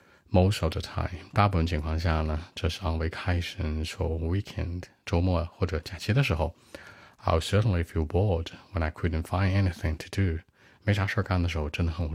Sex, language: male, Chinese